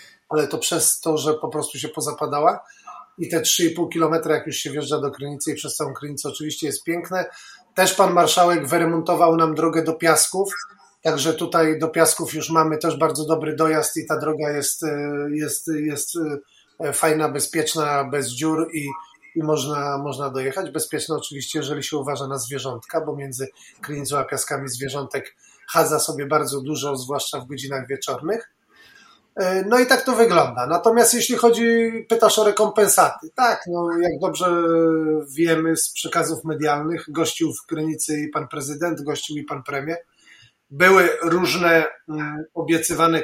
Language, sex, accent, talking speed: Polish, male, native, 155 wpm